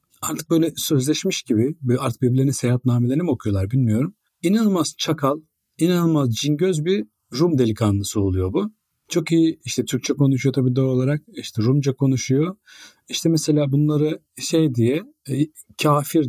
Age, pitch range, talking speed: 40-59, 120-160 Hz, 135 wpm